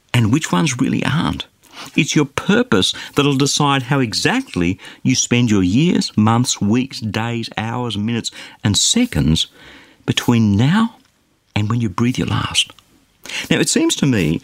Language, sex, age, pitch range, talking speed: English, male, 50-69, 105-155 Hz, 150 wpm